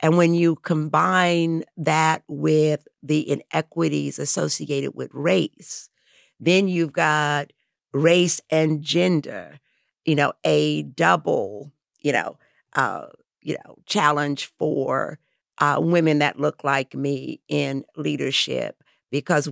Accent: American